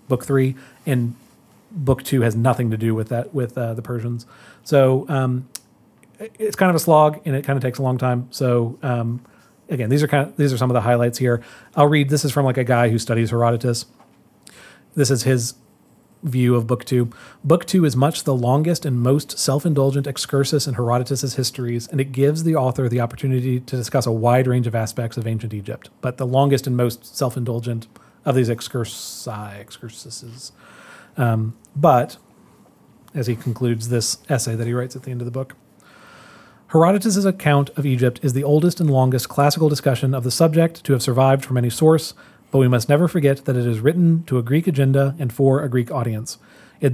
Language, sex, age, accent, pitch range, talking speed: English, male, 40-59, American, 120-145 Hz, 200 wpm